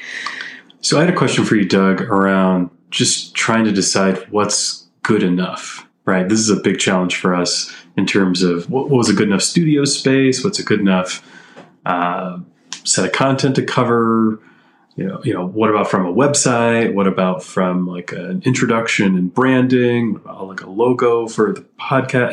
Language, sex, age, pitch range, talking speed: English, male, 30-49, 95-115 Hz, 185 wpm